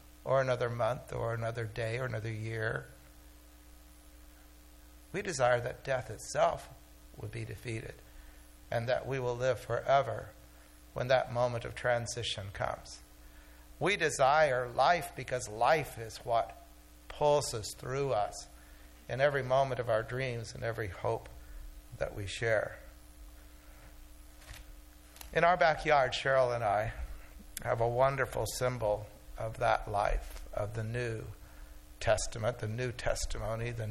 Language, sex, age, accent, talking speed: English, male, 60-79, American, 125 wpm